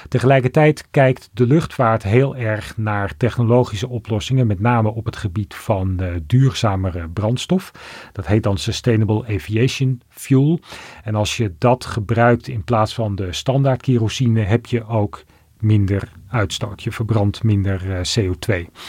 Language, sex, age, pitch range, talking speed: Dutch, male, 40-59, 100-120 Hz, 135 wpm